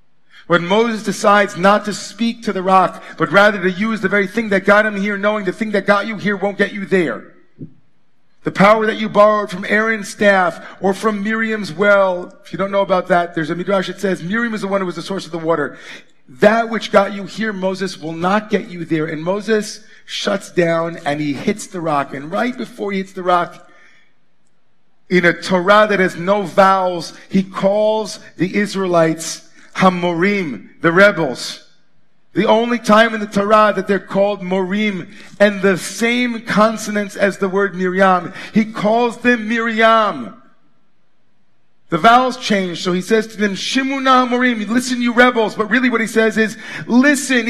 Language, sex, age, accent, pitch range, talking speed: English, male, 40-59, American, 185-220 Hz, 185 wpm